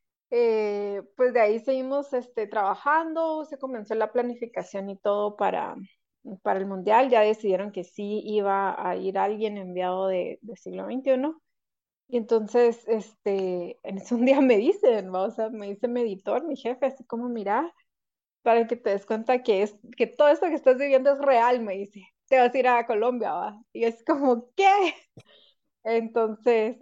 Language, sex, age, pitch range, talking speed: Spanish, female, 30-49, 205-255 Hz, 175 wpm